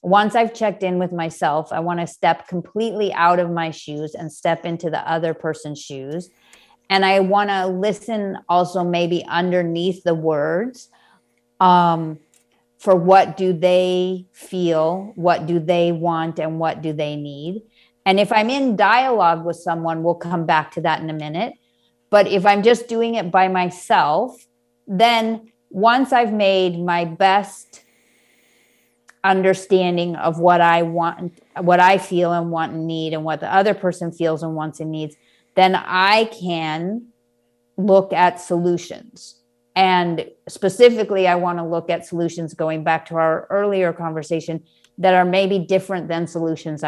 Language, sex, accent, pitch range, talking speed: English, female, American, 160-190 Hz, 160 wpm